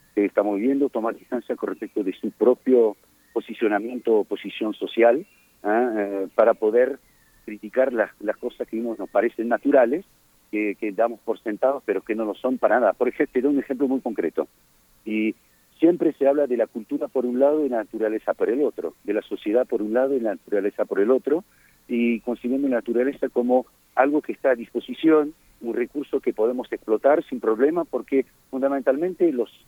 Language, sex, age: Spanish, male, 50-69